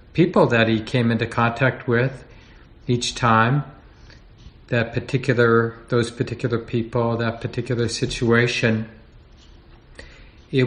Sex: male